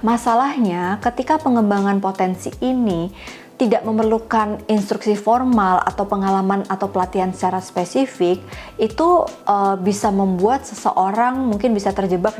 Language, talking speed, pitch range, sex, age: Indonesian, 110 wpm, 180-220 Hz, female, 20-39